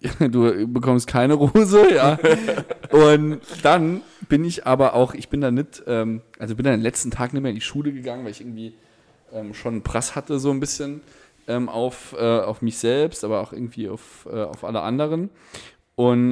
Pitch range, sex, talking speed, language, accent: 110-140 Hz, male, 195 wpm, German, German